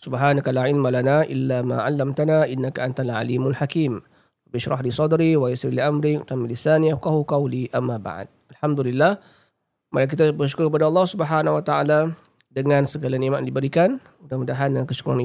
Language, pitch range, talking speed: Malay, 125-150 Hz, 165 wpm